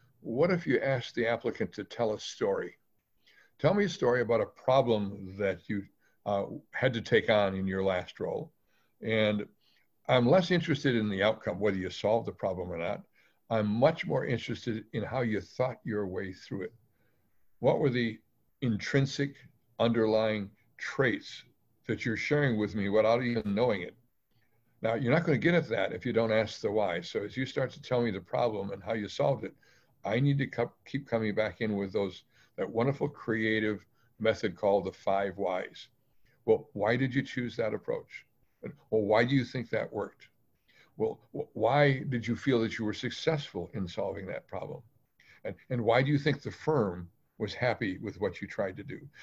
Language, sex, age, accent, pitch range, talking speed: English, male, 60-79, American, 105-130 Hz, 190 wpm